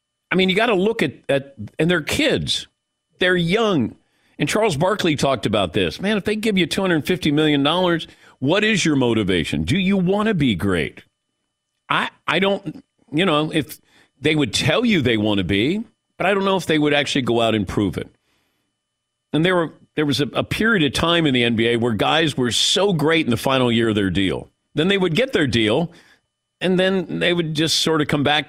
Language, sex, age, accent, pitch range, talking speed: English, male, 50-69, American, 120-180 Hz, 215 wpm